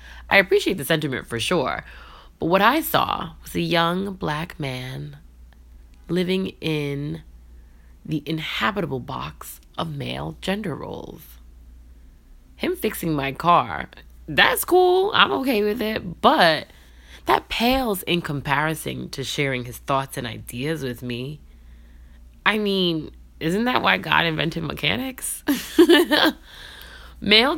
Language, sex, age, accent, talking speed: English, female, 20-39, American, 120 wpm